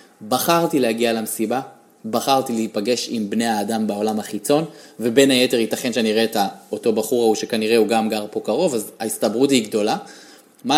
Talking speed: 175 wpm